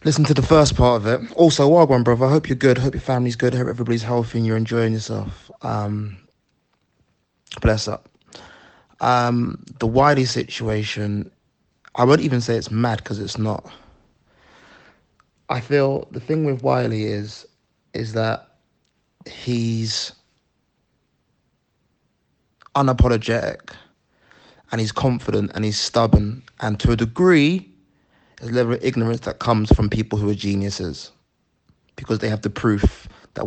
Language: English